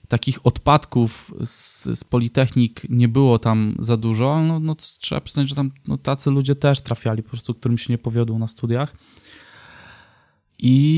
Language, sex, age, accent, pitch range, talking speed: Polish, male, 20-39, native, 115-130 Hz, 165 wpm